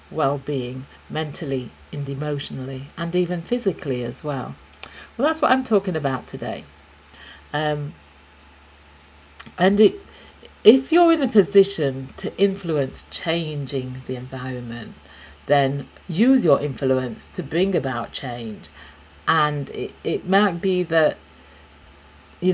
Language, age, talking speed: English, 50-69, 115 wpm